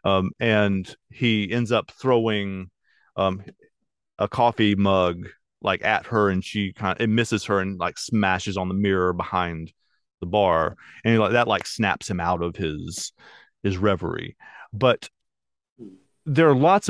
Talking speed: 160 wpm